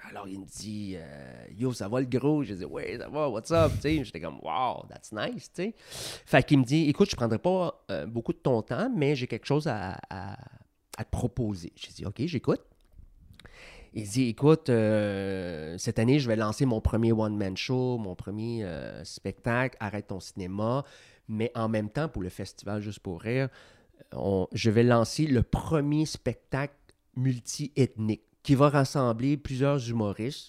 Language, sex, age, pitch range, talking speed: English, male, 30-49, 105-145 Hz, 175 wpm